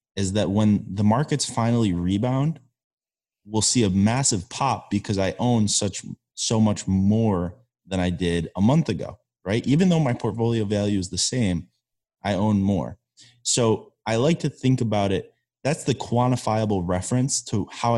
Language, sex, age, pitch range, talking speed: English, male, 20-39, 95-115 Hz, 165 wpm